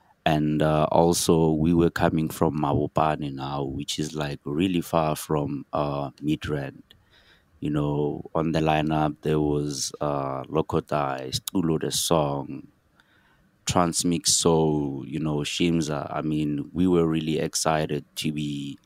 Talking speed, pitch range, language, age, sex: 130 wpm, 75-80 Hz, English, 30-49, male